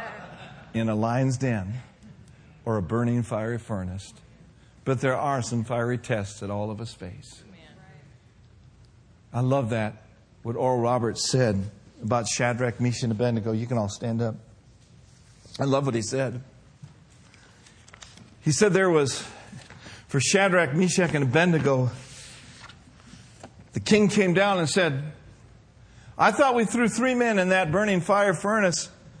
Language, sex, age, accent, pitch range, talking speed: English, male, 50-69, American, 115-180 Hz, 140 wpm